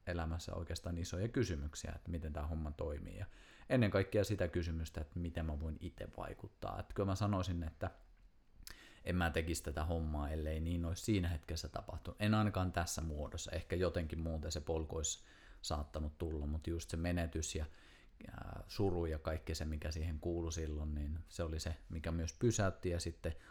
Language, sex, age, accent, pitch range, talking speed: Finnish, male, 30-49, native, 80-90 Hz, 175 wpm